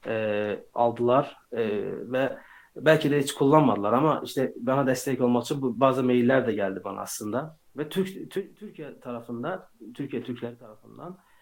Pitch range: 120-145 Hz